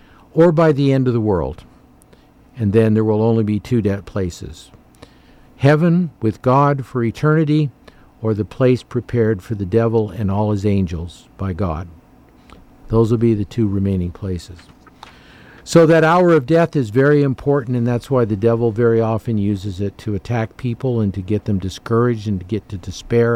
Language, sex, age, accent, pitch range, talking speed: English, male, 50-69, American, 100-125 Hz, 180 wpm